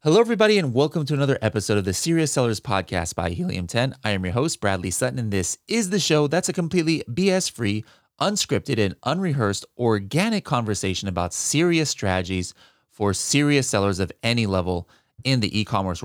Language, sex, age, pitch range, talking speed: English, male, 30-49, 95-135 Hz, 175 wpm